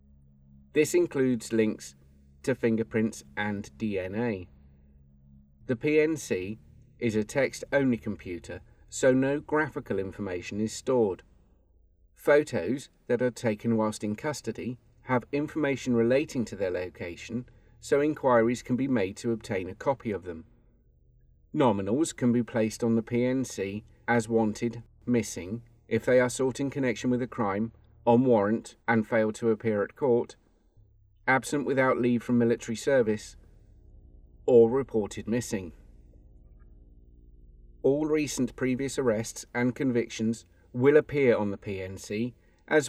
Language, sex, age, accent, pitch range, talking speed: English, male, 40-59, British, 100-130 Hz, 130 wpm